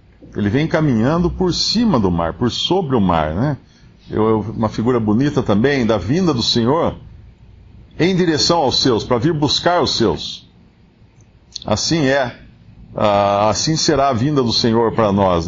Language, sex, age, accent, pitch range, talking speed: Portuguese, male, 50-69, Brazilian, 110-150 Hz, 150 wpm